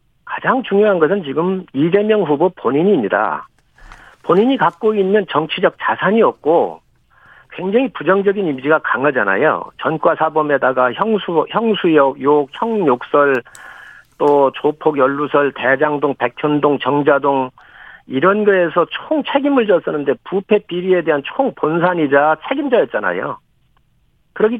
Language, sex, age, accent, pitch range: Korean, male, 50-69, native, 150-215 Hz